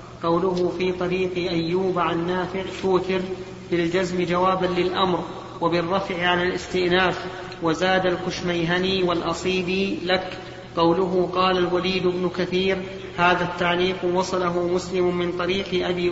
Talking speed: 110 wpm